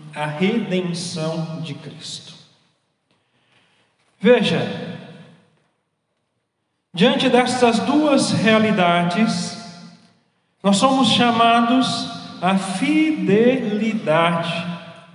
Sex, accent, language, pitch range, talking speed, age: male, Brazilian, Portuguese, 175-240 Hz, 55 wpm, 40-59